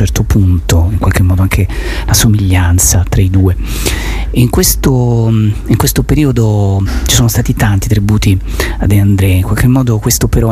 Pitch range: 95-115 Hz